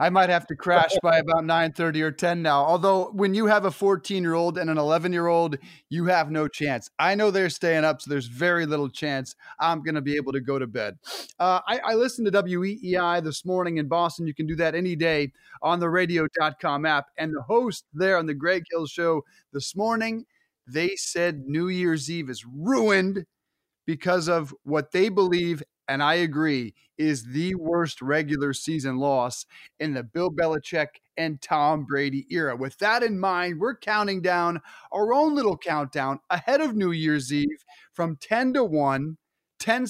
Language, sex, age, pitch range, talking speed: English, male, 30-49, 150-190 Hz, 185 wpm